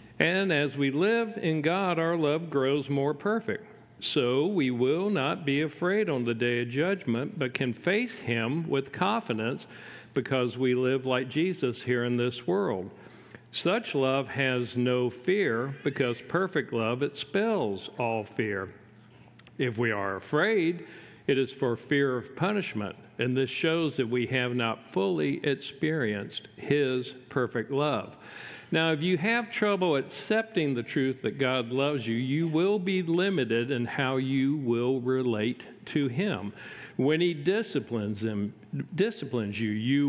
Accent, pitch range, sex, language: American, 120-160 Hz, male, English